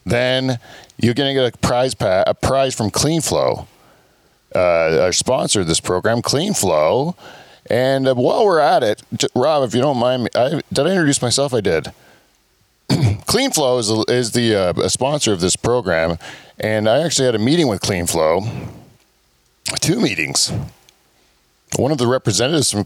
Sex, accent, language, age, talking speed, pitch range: male, American, English, 40-59, 175 wpm, 105-130 Hz